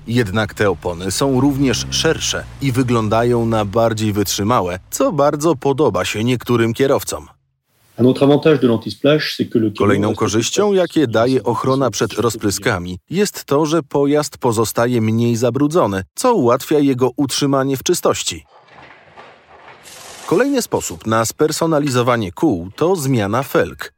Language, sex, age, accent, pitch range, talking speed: Polish, male, 30-49, native, 110-140 Hz, 115 wpm